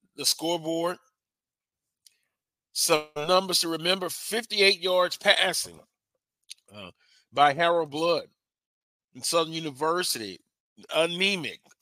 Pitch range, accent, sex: 145-185 Hz, American, male